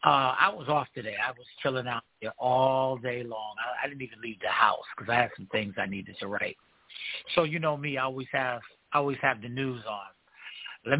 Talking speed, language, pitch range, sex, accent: 225 wpm, English, 135-190 Hz, male, American